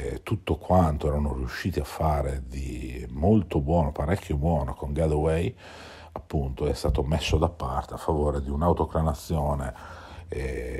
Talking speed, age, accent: 135 wpm, 50-69, native